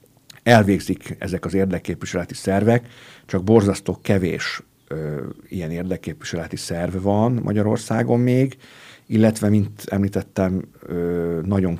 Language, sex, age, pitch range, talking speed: Hungarian, male, 50-69, 85-115 Hz, 100 wpm